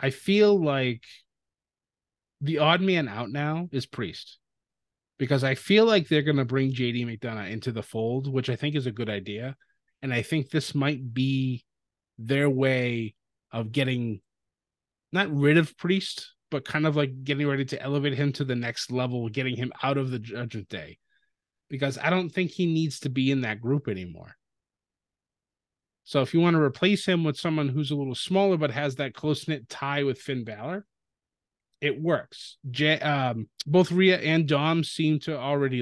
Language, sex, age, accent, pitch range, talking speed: English, male, 30-49, American, 125-160 Hz, 185 wpm